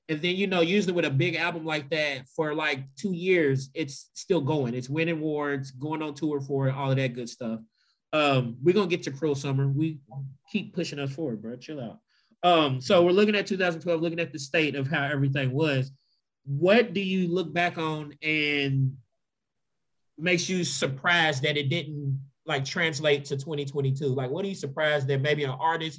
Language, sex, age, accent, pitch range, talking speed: English, male, 20-39, American, 140-175 Hz, 200 wpm